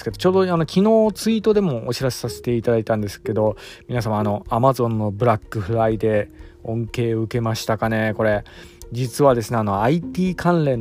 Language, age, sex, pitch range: Japanese, 20-39, male, 110-145 Hz